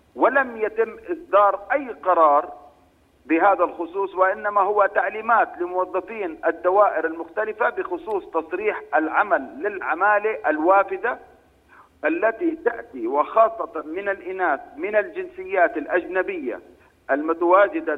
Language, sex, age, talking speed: Arabic, male, 40-59, 90 wpm